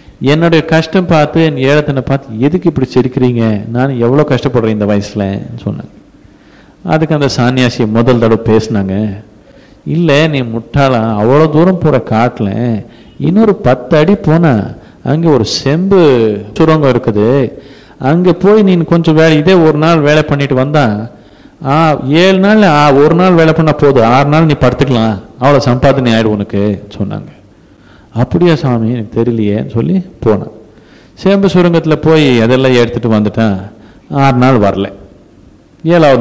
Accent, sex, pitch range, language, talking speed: native, male, 115-155 Hz, Tamil, 135 wpm